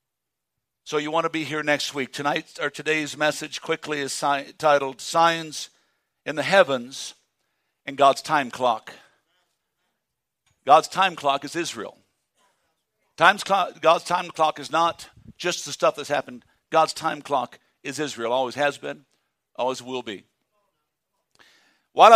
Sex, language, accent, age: male, English, American, 60-79